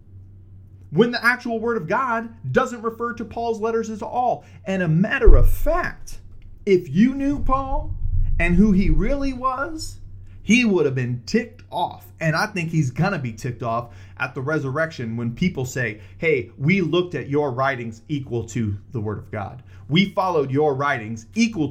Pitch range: 110-180 Hz